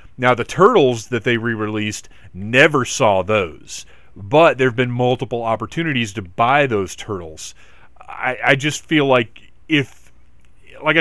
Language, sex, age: English, male, 40-59